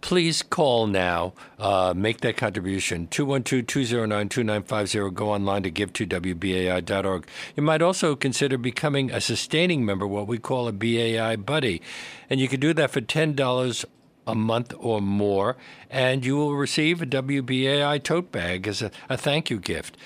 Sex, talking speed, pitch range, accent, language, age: male, 155 wpm, 100-135 Hz, American, English, 60-79